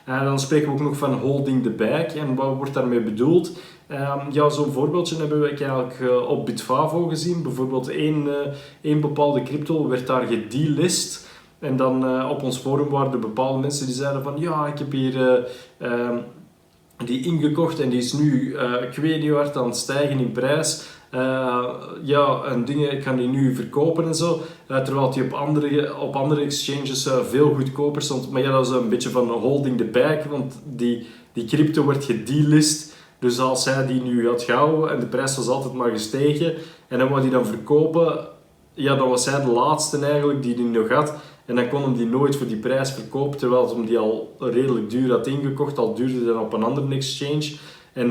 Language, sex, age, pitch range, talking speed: Dutch, male, 20-39, 125-150 Hz, 210 wpm